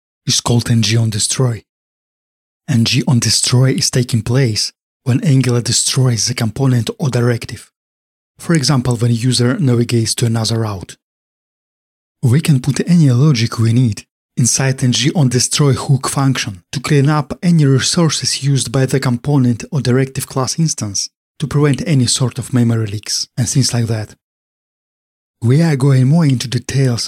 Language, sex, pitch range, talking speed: English, male, 120-140 Hz, 145 wpm